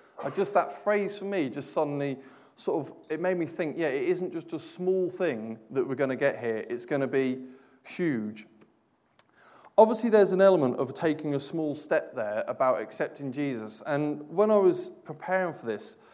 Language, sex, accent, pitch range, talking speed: English, male, British, 135-190 Hz, 190 wpm